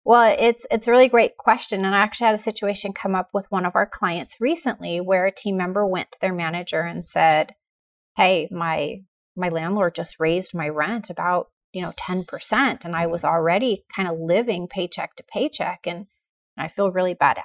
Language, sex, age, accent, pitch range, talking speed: English, female, 30-49, American, 185-225 Hz, 205 wpm